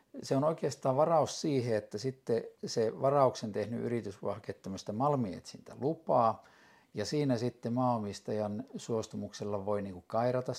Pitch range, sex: 105-130 Hz, male